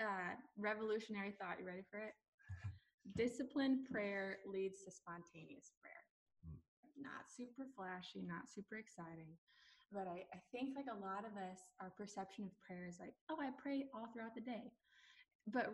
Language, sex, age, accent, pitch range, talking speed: English, female, 10-29, American, 195-250 Hz, 160 wpm